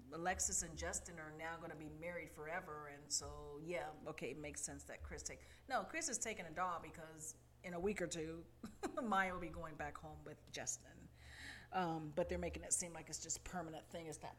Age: 40-59